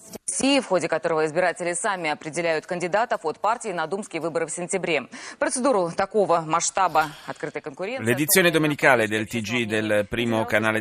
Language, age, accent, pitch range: Italian, 30-49, native, 110-145 Hz